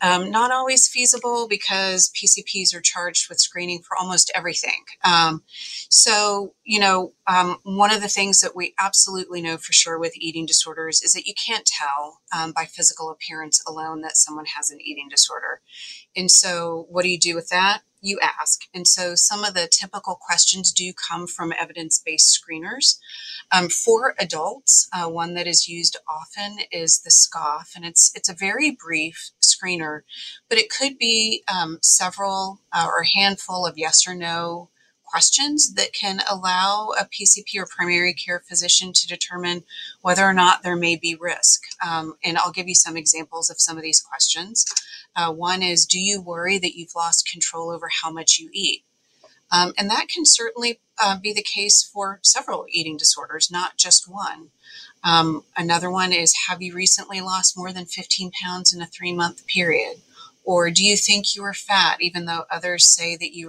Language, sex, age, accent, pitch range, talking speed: English, female, 30-49, American, 165-195 Hz, 185 wpm